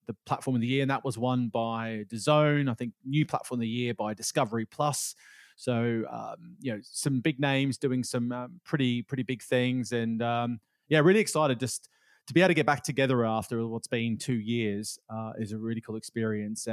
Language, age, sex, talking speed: English, 30-49, male, 210 wpm